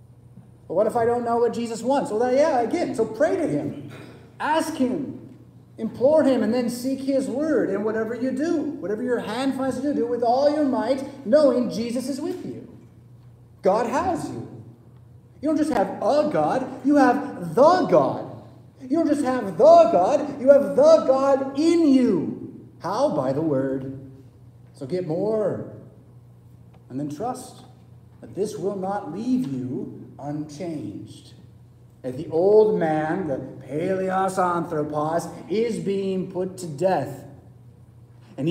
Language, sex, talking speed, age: English, male, 155 wpm, 30-49